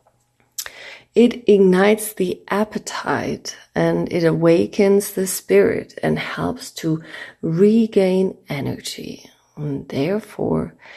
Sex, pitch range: female, 145-205 Hz